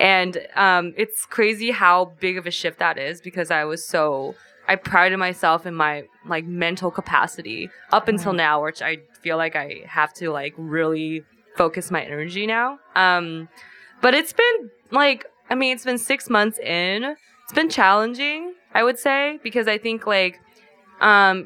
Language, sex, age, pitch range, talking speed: English, female, 20-39, 170-210 Hz, 175 wpm